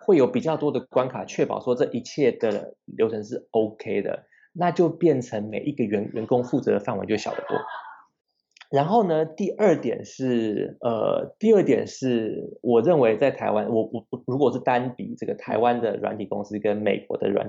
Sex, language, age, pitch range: male, Chinese, 20-39, 110-155 Hz